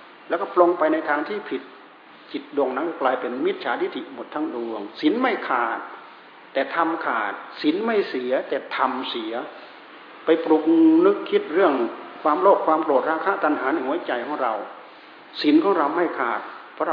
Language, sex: Thai, male